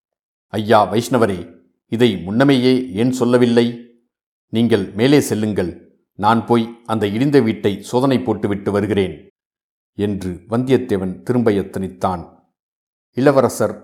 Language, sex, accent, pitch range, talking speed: Tamil, male, native, 100-120 Hz, 95 wpm